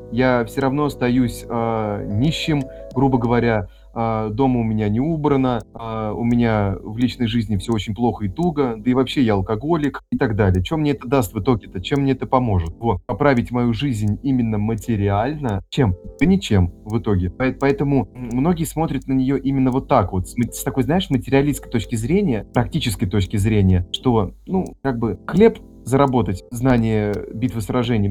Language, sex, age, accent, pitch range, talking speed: Russian, male, 30-49, native, 105-135 Hz, 170 wpm